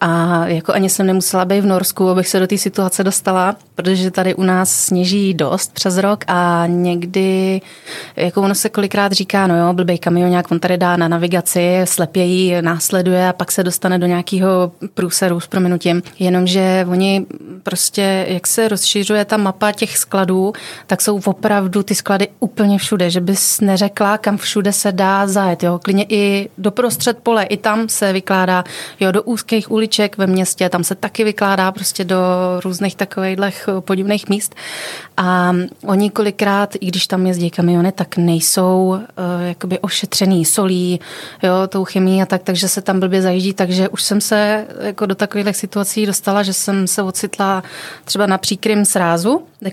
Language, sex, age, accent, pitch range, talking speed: Czech, female, 30-49, native, 180-200 Hz, 170 wpm